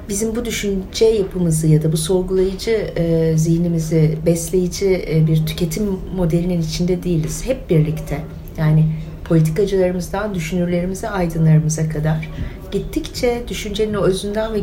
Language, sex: Turkish, female